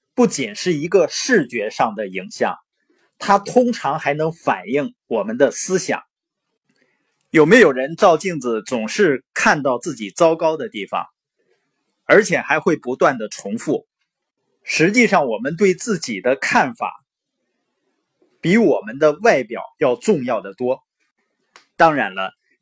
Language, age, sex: Chinese, 20-39, male